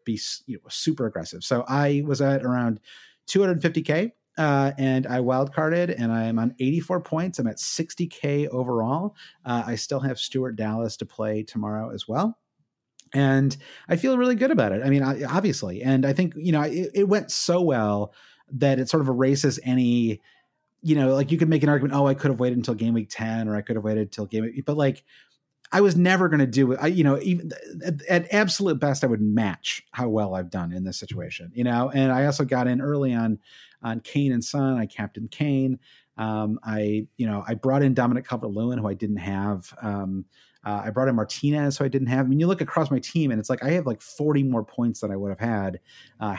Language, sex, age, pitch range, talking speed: English, male, 30-49, 110-145 Hz, 230 wpm